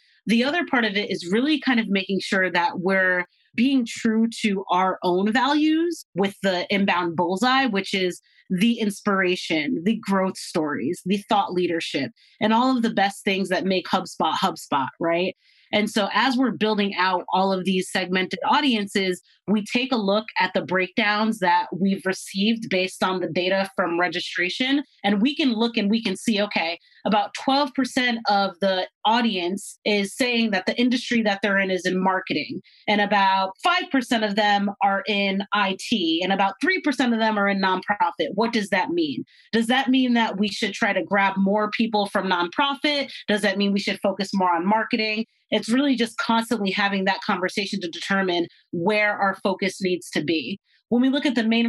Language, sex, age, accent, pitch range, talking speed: English, female, 30-49, American, 190-230 Hz, 185 wpm